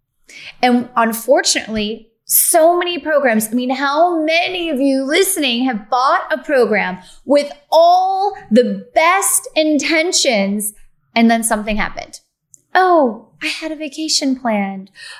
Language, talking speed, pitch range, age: English, 120 wpm, 200-290 Hz, 10-29